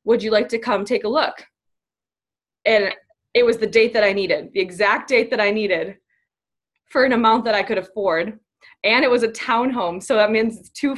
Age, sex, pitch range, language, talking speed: 20-39, female, 210-275 Hz, English, 215 wpm